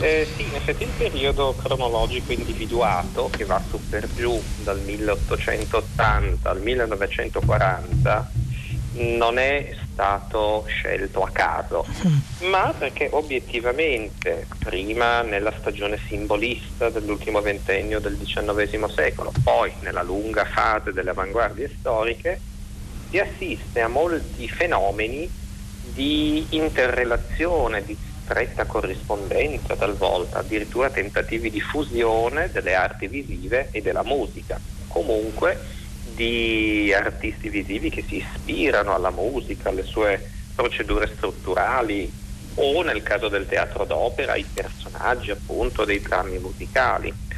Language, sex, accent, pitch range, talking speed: Italian, male, native, 100-125 Hz, 110 wpm